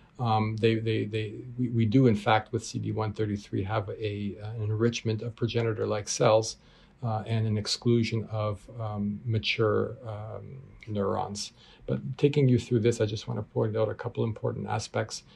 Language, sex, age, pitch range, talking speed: English, male, 40-59, 110-120 Hz, 165 wpm